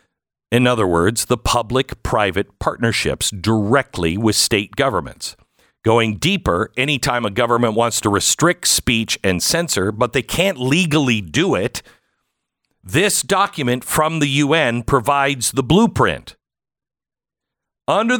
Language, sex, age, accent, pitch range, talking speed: English, male, 50-69, American, 110-150 Hz, 120 wpm